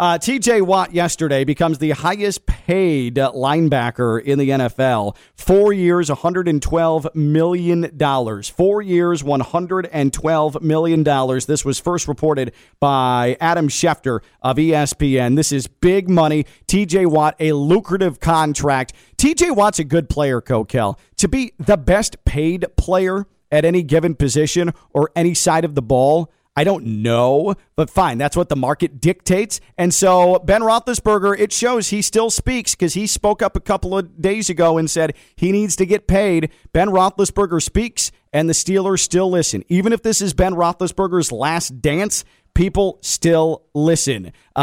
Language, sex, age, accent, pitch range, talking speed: English, male, 40-59, American, 140-185 Hz, 150 wpm